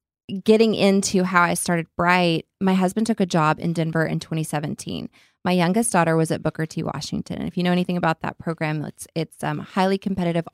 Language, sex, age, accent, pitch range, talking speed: English, female, 20-39, American, 165-195 Hz, 210 wpm